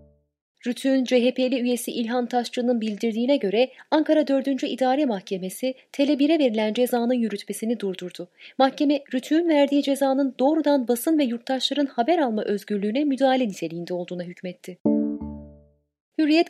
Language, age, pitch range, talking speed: Turkish, 30-49, 200-275 Hz, 115 wpm